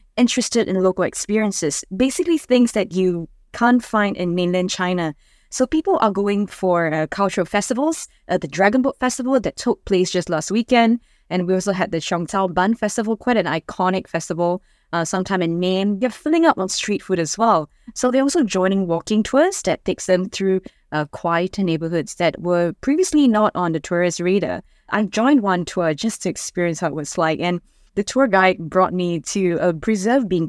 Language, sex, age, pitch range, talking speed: English, female, 20-39, 175-220 Hz, 190 wpm